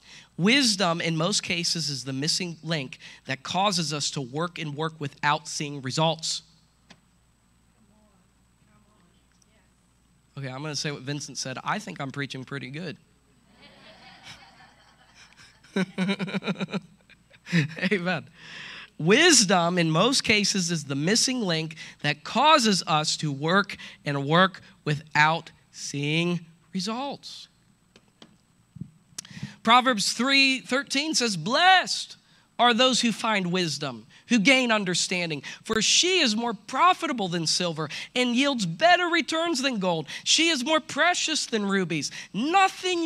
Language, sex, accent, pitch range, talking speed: English, male, American, 155-225 Hz, 115 wpm